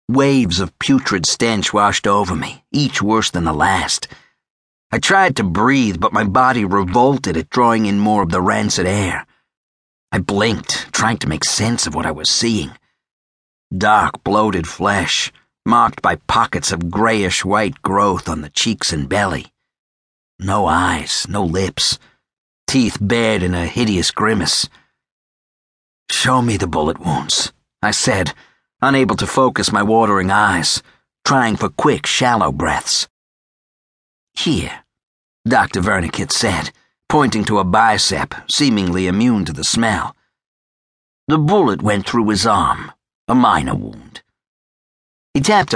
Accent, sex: American, male